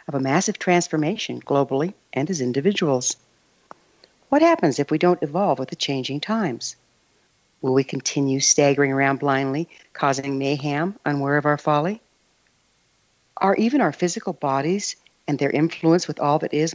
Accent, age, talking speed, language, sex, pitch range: American, 60-79, 145 wpm, English, female, 140-185 Hz